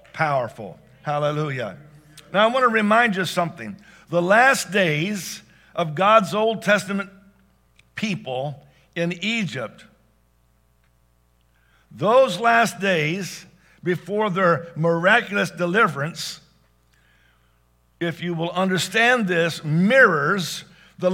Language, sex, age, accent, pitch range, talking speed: English, male, 50-69, American, 155-210 Hz, 95 wpm